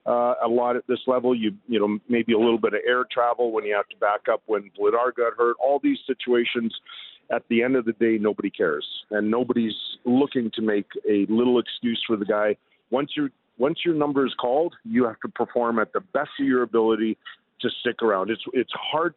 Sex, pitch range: male, 110-130 Hz